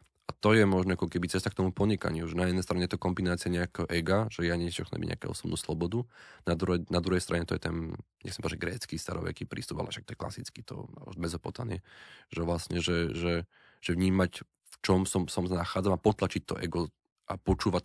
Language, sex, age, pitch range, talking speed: Slovak, male, 20-39, 85-95 Hz, 210 wpm